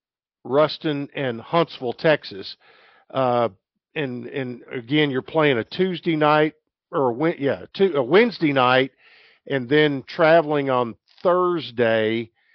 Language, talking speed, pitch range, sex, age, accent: English, 125 wpm, 125-150 Hz, male, 50-69, American